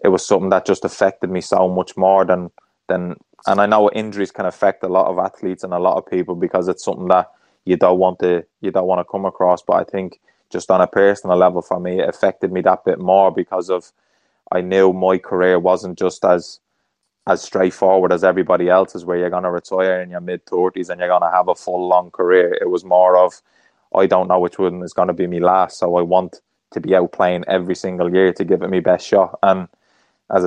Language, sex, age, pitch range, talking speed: English, male, 20-39, 90-95 Hz, 240 wpm